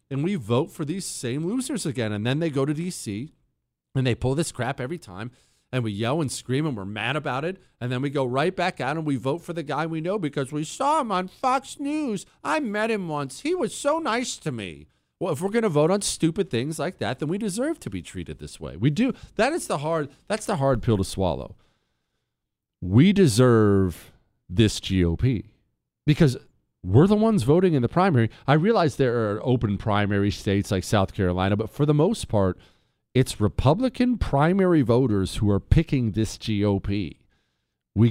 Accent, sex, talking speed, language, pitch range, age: American, male, 205 wpm, English, 105-170 Hz, 40-59